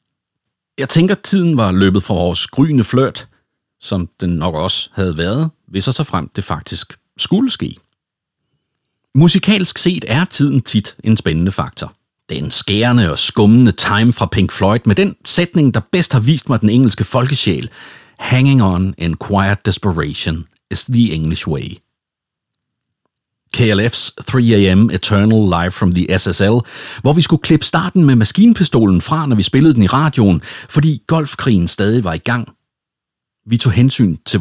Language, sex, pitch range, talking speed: Danish, male, 100-145 Hz, 160 wpm